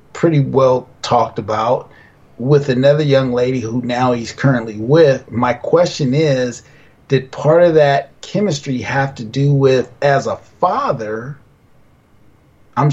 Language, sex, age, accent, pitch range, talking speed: English, male, 30-49, American, 125-145 Hz, 135 wpm